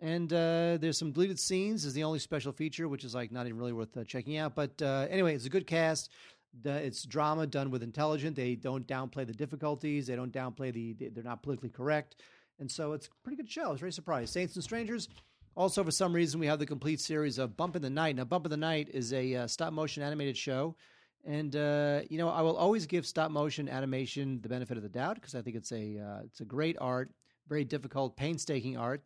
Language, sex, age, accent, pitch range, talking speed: English, male, 30-49, American, 125-160 Hz, 240 wpm